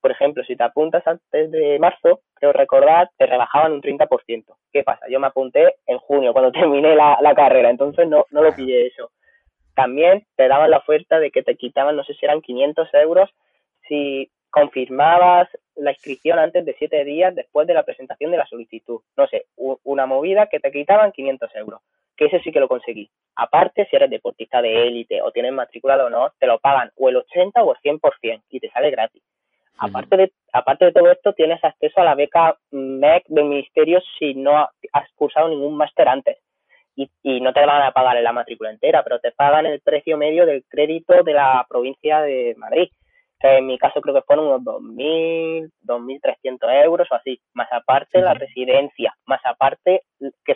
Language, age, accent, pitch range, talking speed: Spanish, 20-39, Spanish, 135-220 Hz, 195 wpm